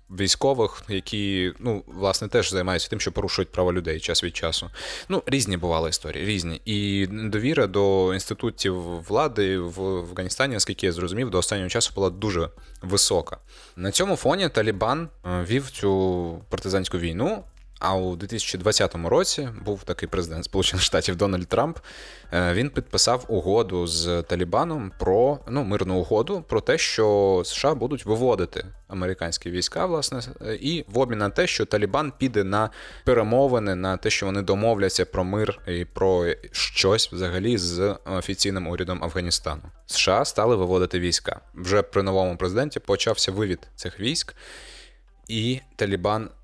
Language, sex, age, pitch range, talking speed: Ukrainian, male, 20-39, 90-110 Hz, 145 wpm